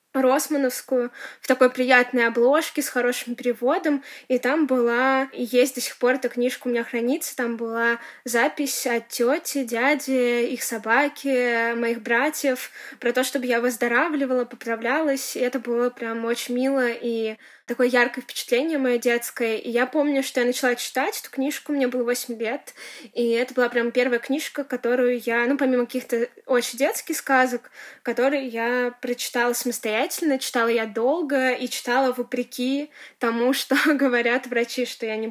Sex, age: female, 20-39